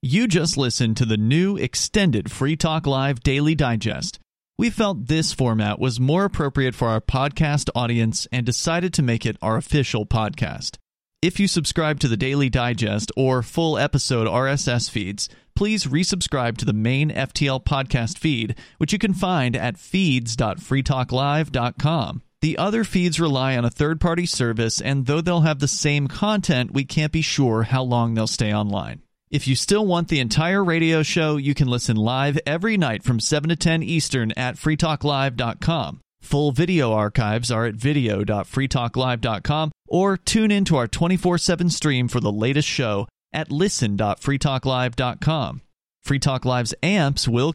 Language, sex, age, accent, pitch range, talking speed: English, male, 40-59, American, 120-165 Hz, 160 wpm